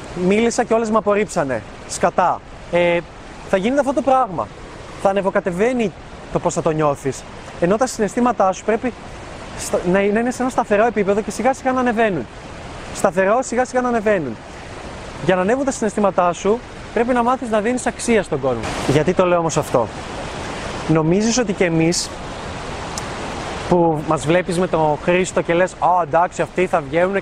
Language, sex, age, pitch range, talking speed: Greek, male, 20-39, 175-235 Hz, 170 wpm